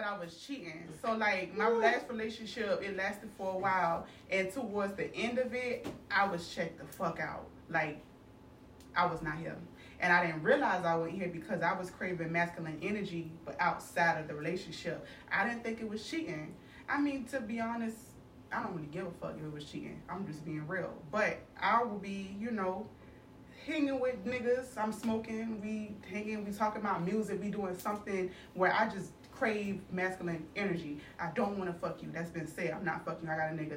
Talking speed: 205 wpm